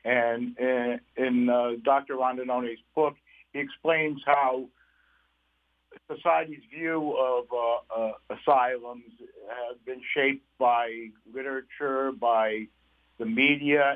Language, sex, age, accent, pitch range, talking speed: English, male, 60-79, American, 115-145 Hz, 100 wpm